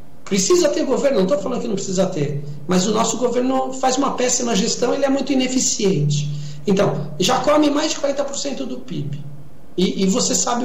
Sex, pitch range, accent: male, 180-255 Hz, Brazilian